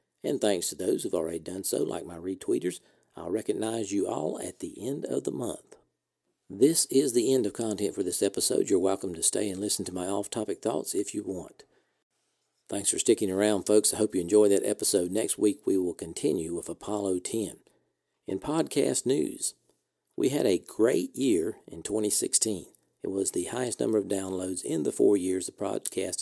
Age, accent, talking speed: 50-69, American, 195 wpm